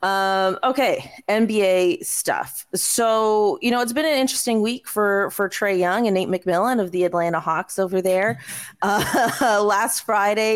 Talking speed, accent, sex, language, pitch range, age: 160 wpm, American, female, English, 165-200 Hz, 30-49